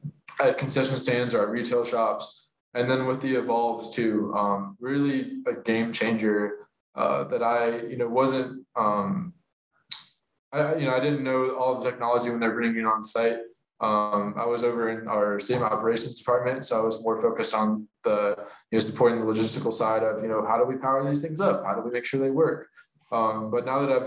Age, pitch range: 20-39, 110-130 Hz